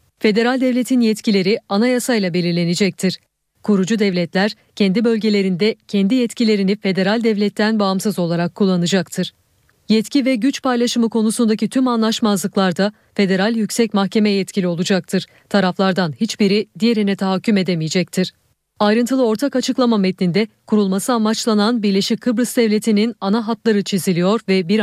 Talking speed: 115 wpm